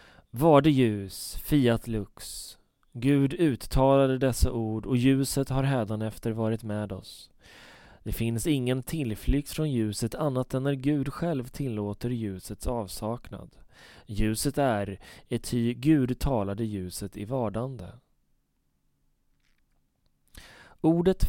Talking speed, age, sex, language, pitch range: 110 wpm, 20-39, male, Swedish, 110-135 Hz